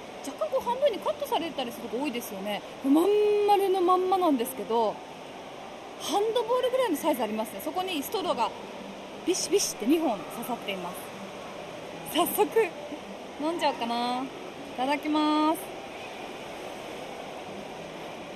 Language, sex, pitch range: Japanese, female, 290-380 Hz